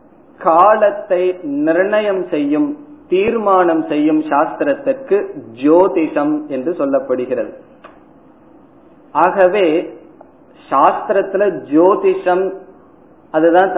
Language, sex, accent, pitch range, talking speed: Tamil, male, native, 165-215 Hz, 55 wpm